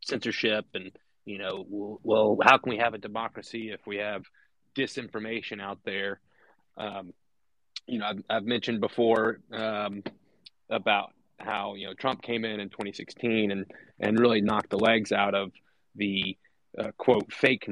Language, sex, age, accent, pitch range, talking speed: English, male, 30-49, American, 100-120 Hz, 155 wpm